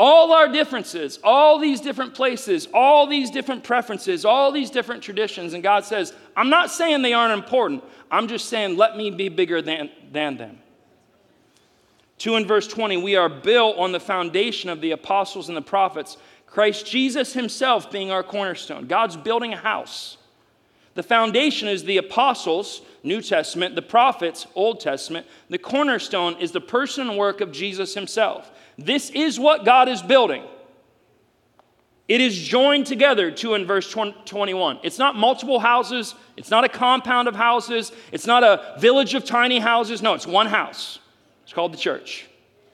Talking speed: 170 wpm